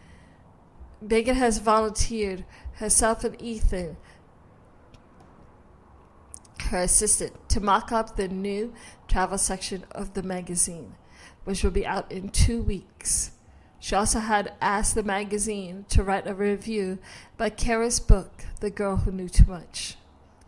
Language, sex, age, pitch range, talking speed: English, female, 50-69, 165-215 Hz, 130 wpm